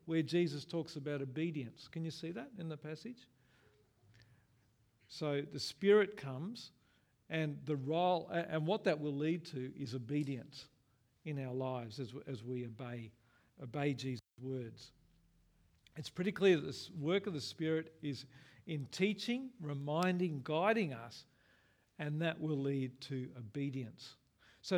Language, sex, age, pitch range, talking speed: English, male, 50-69, 130-170 Hz, 140 wpm